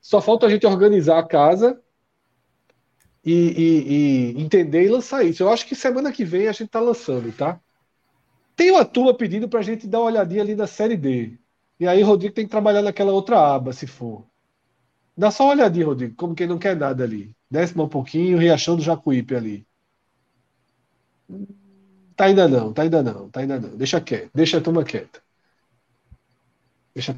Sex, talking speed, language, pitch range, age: male, 185 wpm, Portuguese, 160-230 Hz, 40-59